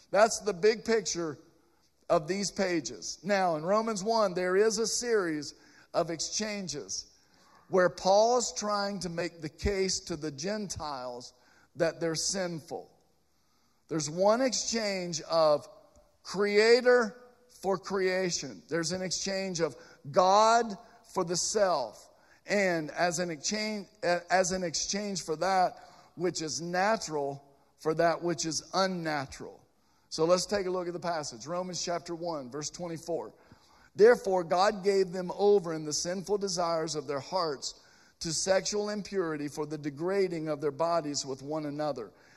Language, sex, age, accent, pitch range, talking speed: English, male, 50-69, American, 160-200 Hz, 140 wpm